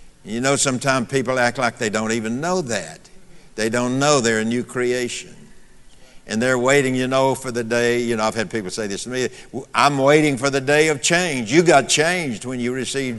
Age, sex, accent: 60-79, male, American